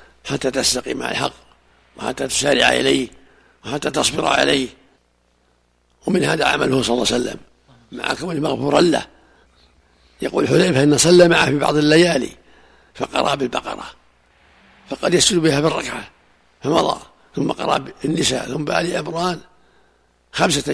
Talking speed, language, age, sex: 125 wpm, Arabic, 60-79, male